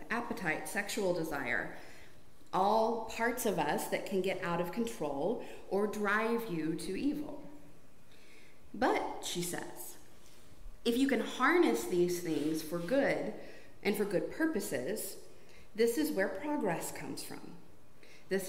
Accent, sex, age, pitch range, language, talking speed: American, female, 40-59, 165-225 Hz, English, 130 wpm